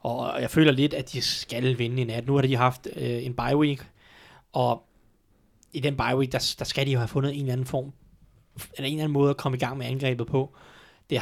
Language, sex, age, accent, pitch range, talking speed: Danish, male, 20-39, native, 125-145 Hz, 250 wpm